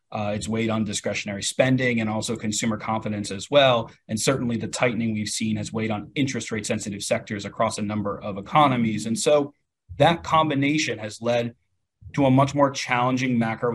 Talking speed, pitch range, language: 185 wpm, 110-135 Hz, English